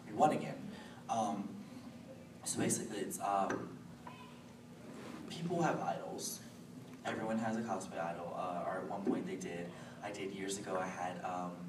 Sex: male